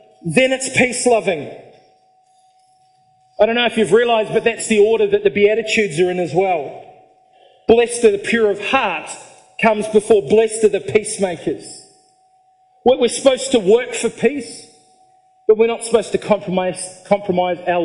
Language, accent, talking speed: English, Australian, 155 wpm